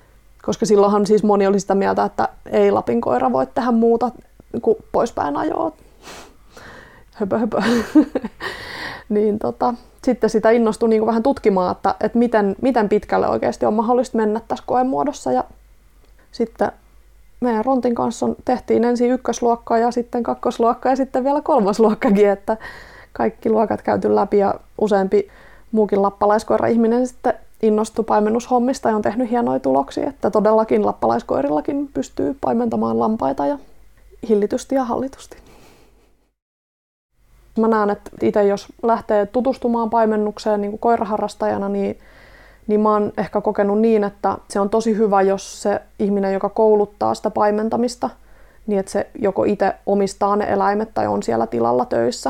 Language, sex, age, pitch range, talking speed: Finnish, female, 20-39, 200-235 Hz, 140 wpm